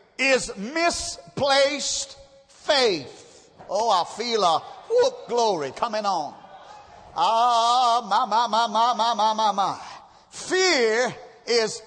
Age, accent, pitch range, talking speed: 50-69, American, 260-355 Hz, 105 wpm